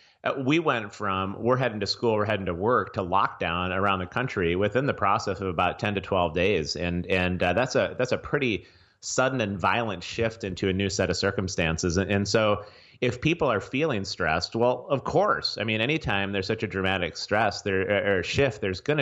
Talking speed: 215 wpm